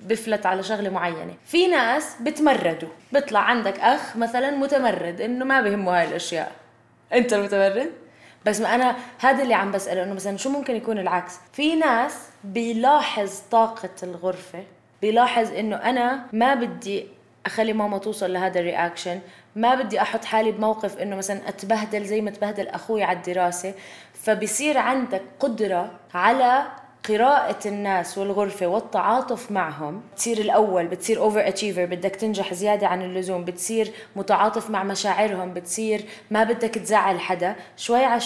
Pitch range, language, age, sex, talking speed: 185-235 Hz, Arabic, 20-39, female, 145 wpm